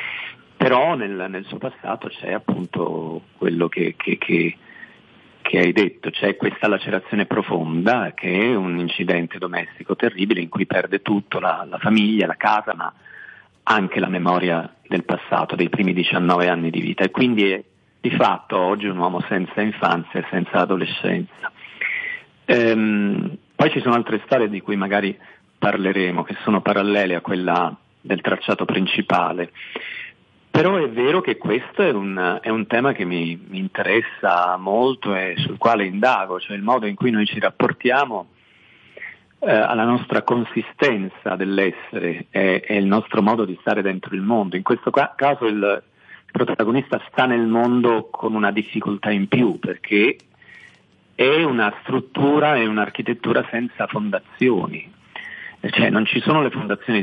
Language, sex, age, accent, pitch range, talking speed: Italian, male, 40-59, native, 90-110 Hz, 155 wpm